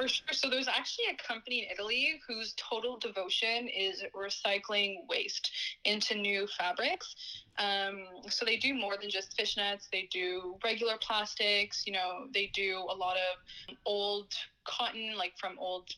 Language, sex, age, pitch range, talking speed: English, female, 20-39, 190-220 Hz, 160 wpm